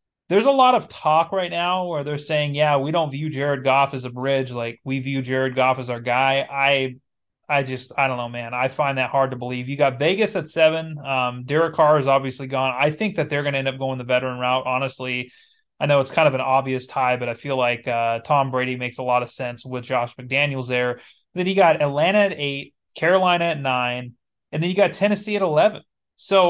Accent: American